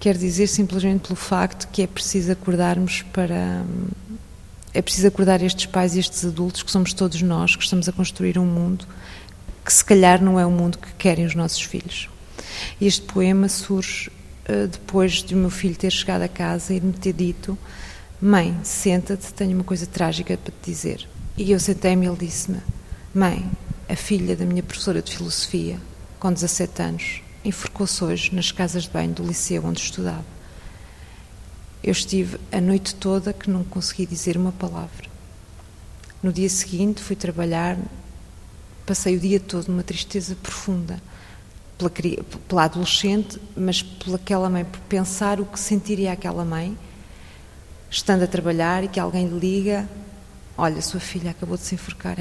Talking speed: 165 wpm